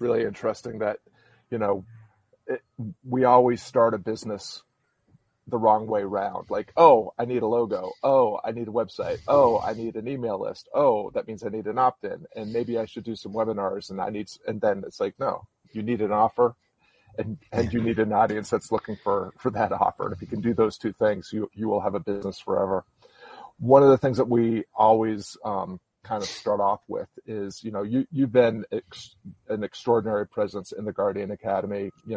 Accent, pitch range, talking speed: American, 105-120 Hz, 210 wpm